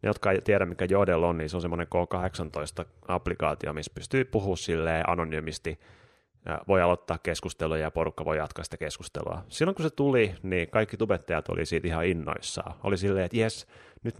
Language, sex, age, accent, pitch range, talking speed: Finnish, male, 30-49, native, 85-110 Hz, 180 wpm